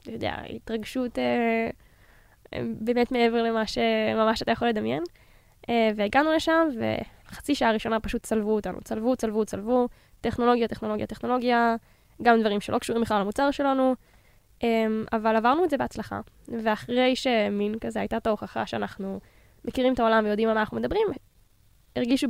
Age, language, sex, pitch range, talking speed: 10-29, Hebrew, female, 220-250 Hz, 150 wpm